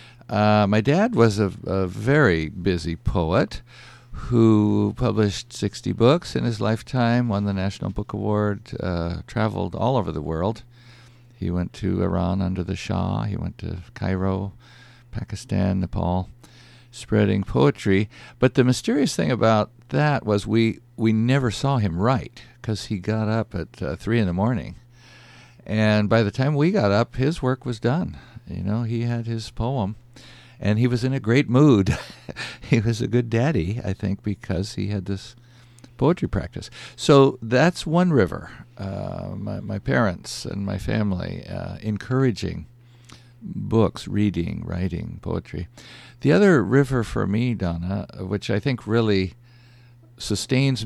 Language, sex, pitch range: English, male, 100-125 Hz